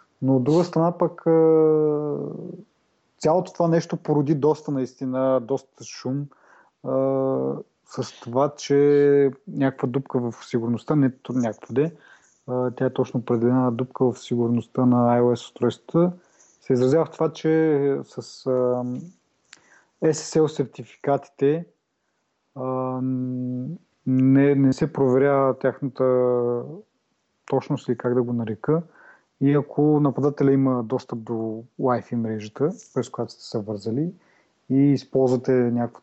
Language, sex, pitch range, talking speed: Bulgarian, male, 125-145 Hz, 115 wpm